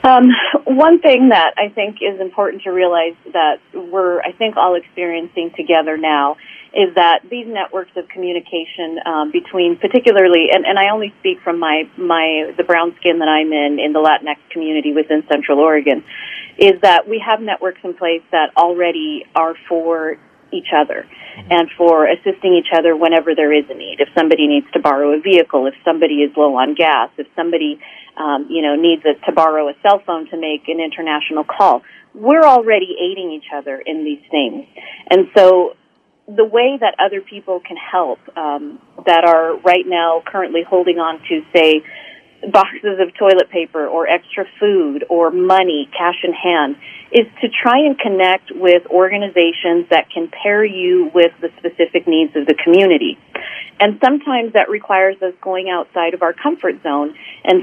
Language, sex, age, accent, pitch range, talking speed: English, female, 40-59, American, 160-200 Hz, 175 wpm